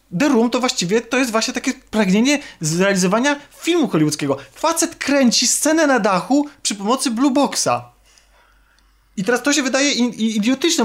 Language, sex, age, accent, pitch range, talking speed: Polish, male, 20-39, native, 165-225 Hz, 150 wpm